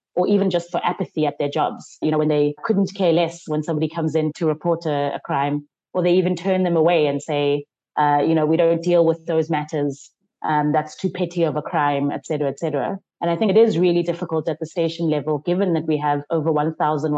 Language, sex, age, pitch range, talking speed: English, female, 20-39, 150-175 Hz, 240 wpm